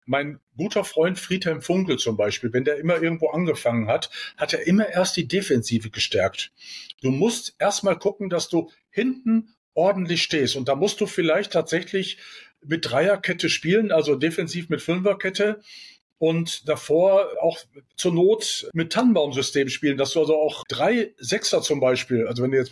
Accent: German